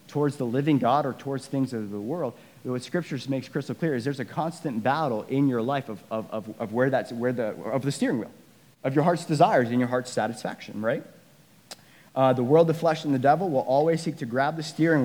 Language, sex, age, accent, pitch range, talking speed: English, male, 30-49, American, 120-165 Hz, 235 wpm